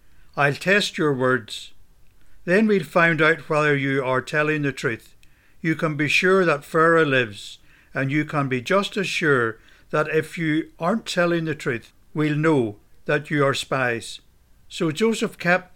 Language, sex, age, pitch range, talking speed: English, male, 60-79, 130-170 Hz, 170 wpm